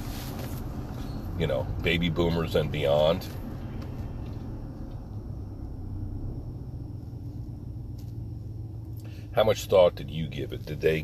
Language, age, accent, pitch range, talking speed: English, 40-59, American, 85-110 Hz, 80 wpm